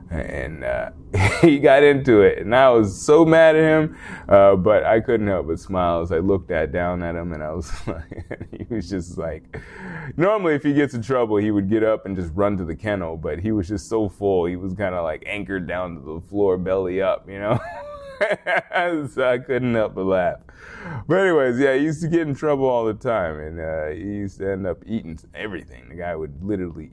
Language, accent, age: English, American, 20-39